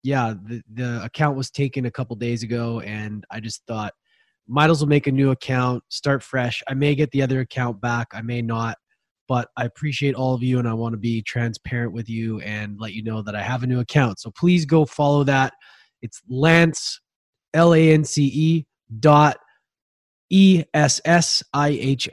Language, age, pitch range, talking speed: English, 20-39, 120-150 Hz, 205 wpm